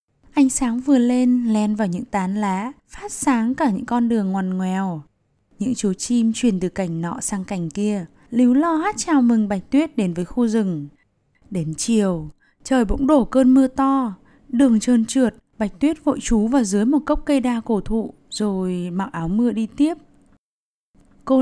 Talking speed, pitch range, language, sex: 190 wpm, 195-270 Hz, Vietnamese, female